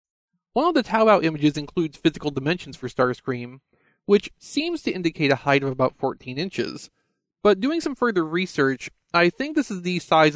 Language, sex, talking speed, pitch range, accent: English, male, 180 wpm, 135-195 Hz, American